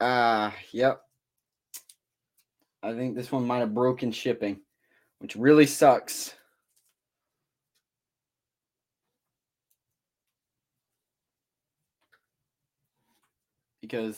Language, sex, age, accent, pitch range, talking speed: English, male, 20-39, American, 110-145 Hz, 65 wpm